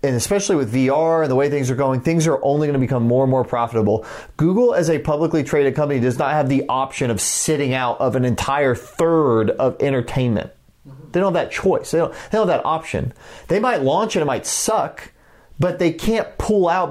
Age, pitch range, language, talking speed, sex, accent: 30-49, 130-175 Hz, English, 225 wpm, male, American